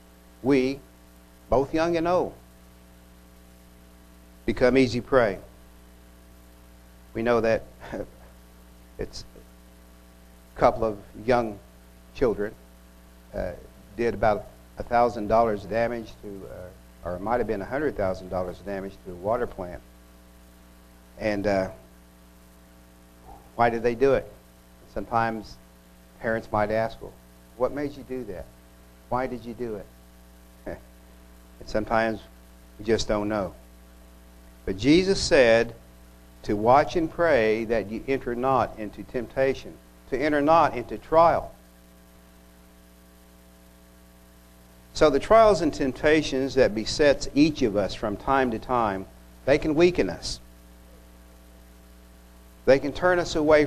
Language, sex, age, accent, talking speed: English, male, 60-79, American, 115 wpm